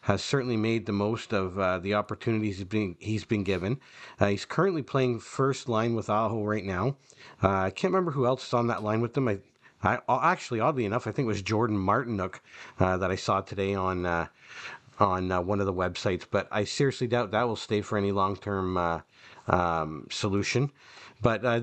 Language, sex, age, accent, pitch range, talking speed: English, male, 50-69, American, 100-120 Hz, 210 wpm